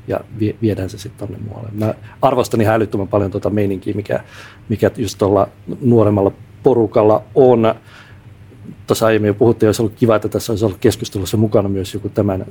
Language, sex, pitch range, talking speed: Finnish, male, 100-115 Hz, 175 wpm